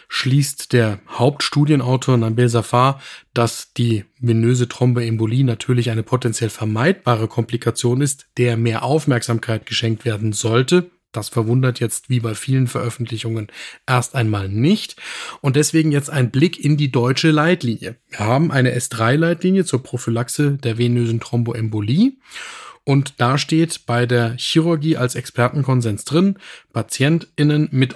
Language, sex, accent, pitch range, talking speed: German, male, German, 115-140 Hz, 130 wpm